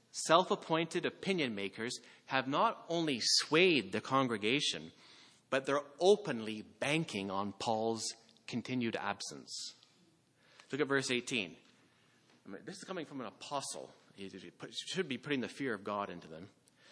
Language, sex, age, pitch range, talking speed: English, male, 40-59, 125-185 Hz, 130 wpm